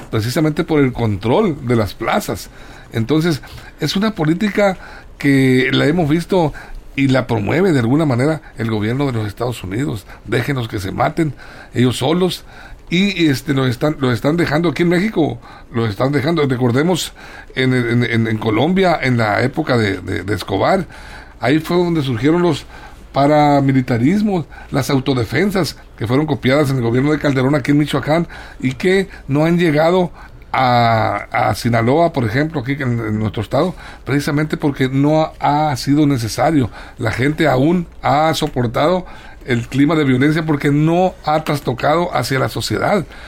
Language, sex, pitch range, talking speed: Spanish, male, 125-160 Hz, 160 wpm